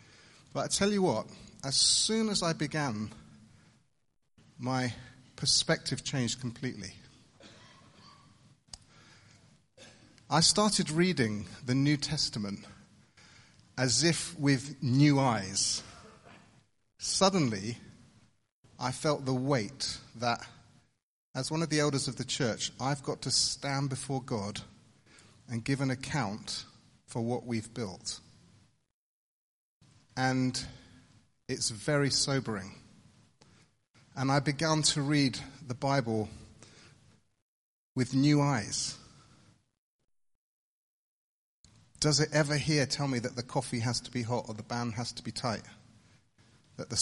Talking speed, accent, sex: 115 wpm, British, male